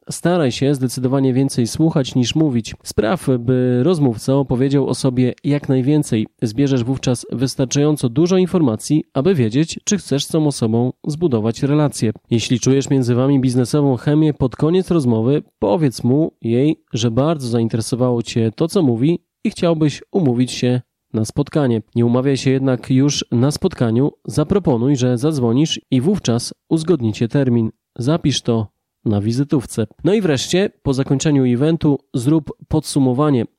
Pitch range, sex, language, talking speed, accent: 125-150 Hz, male, Polish, 145 wpm, native